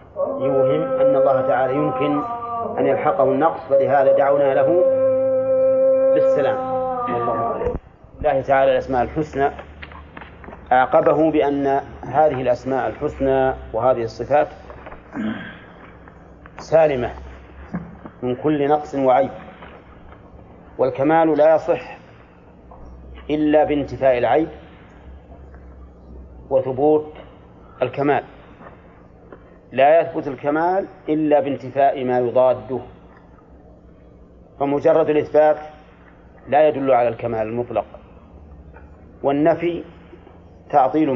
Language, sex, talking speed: Arabic, male, 80 wpm